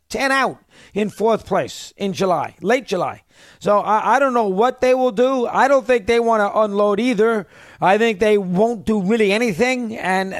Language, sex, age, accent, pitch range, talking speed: English, male, 40-59, American, 190-225 Hz, 195 wpm